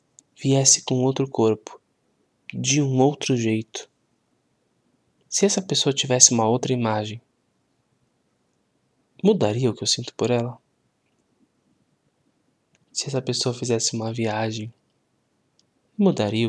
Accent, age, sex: Brazilian, 20-39, male